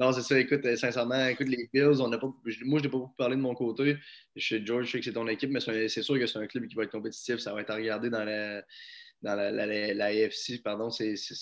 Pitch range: 110-130 Hz